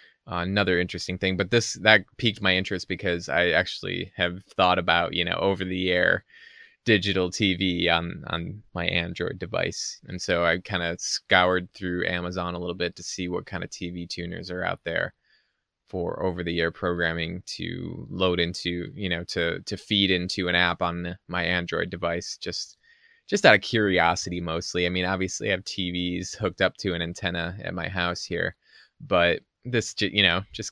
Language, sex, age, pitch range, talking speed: English, male, 20-39, 85-100 Hz, 185 wpm